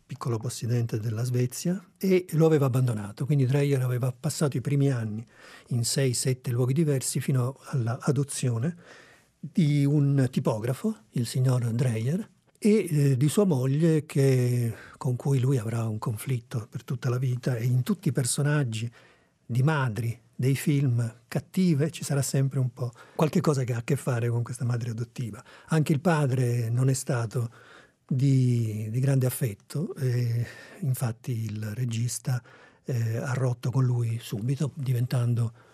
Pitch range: 120-145 Hz